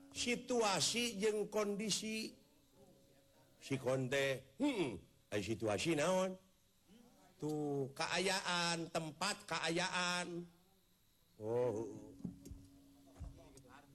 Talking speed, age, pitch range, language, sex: 60 wpm, 50-69, 115-165 Hz, Indonesian, male